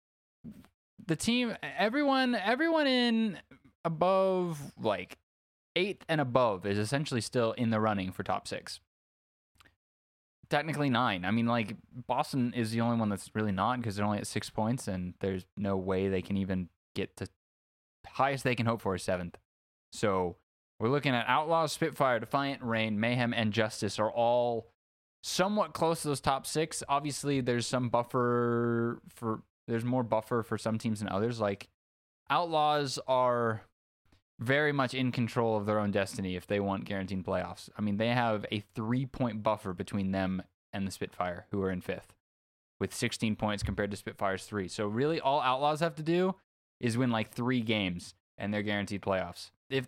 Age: 20-39